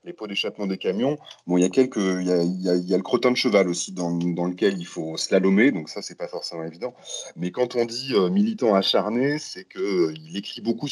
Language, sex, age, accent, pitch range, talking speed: French, male, 30-49, French, 90-115 Hz, 240 wpm